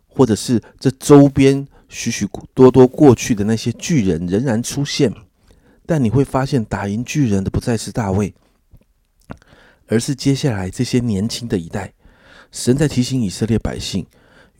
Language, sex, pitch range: Chinese, male, 95-130 Hz